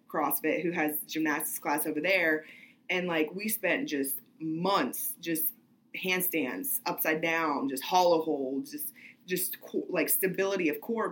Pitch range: 155-185 Hz